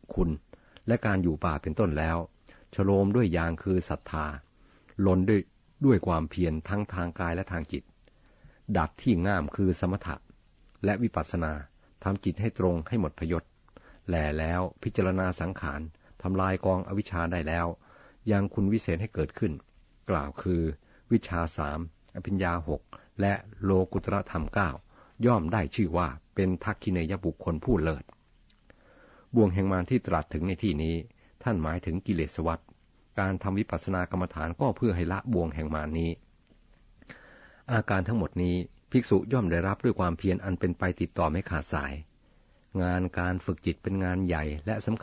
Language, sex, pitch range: Thai, male, 85-100 Hz